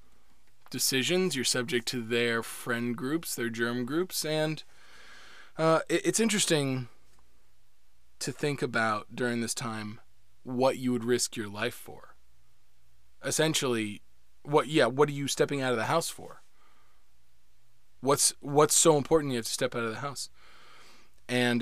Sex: male